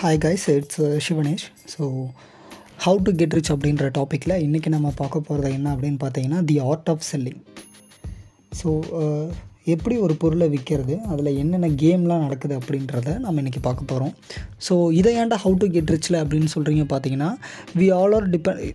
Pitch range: 145-190 Hz